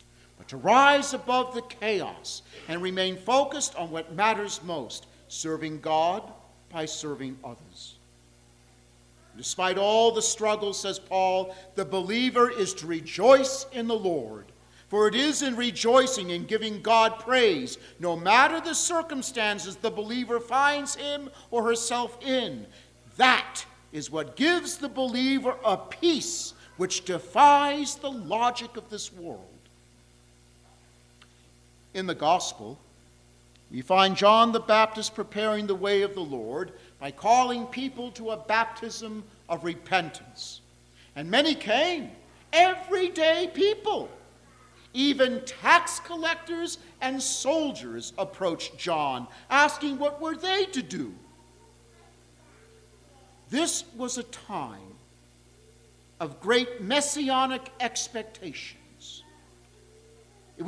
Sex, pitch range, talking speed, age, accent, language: male, 155-265 Hz, 115 wpm, 50-69, American, English